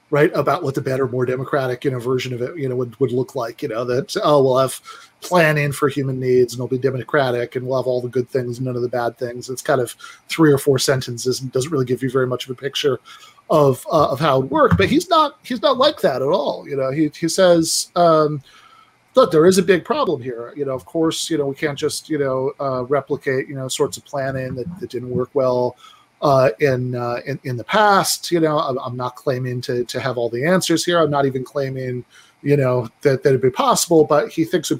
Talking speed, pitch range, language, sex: 255 wpm, 130-155 Hz, English, male